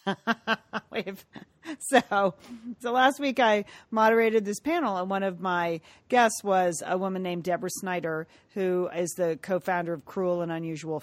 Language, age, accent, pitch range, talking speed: English, 40-59, American, 160-195 Hz, 150 wpm